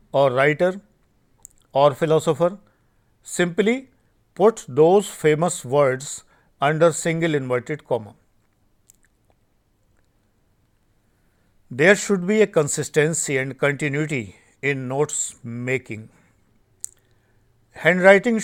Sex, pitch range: male, 115-165 Hz